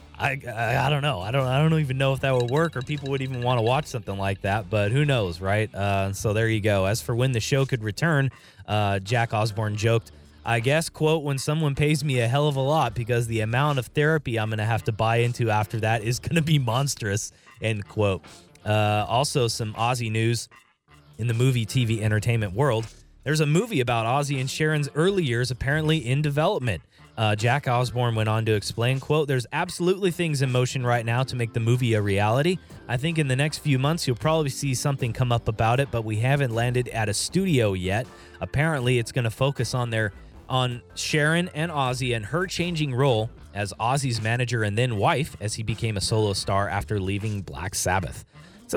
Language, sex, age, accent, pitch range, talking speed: English, male, 20-39, American, 110-140 Hz, 215 wpm